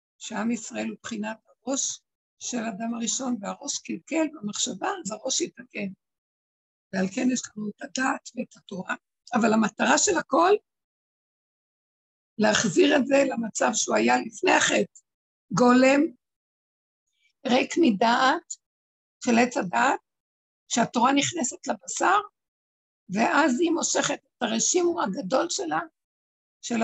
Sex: female